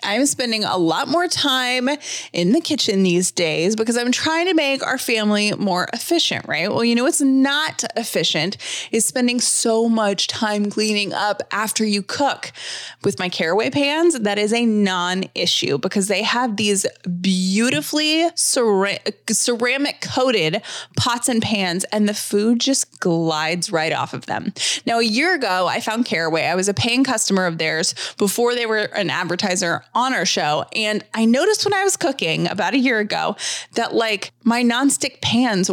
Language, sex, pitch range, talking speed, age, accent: English, female, 185-245 Hz, 170 wpm, 20-39, American